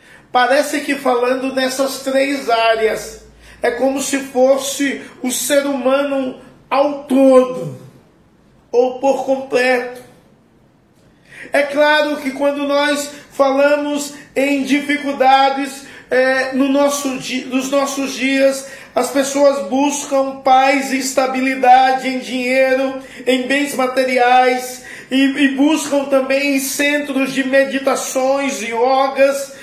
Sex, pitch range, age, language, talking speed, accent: male, 255-275 Hz, 50-69, Portuguese, 105 wpm, Brazilian